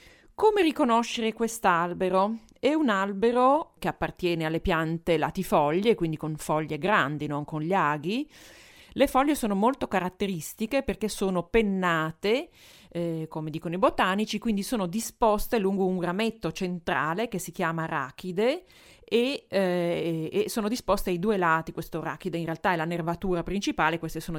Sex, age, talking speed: female, 30-49, 150 wpm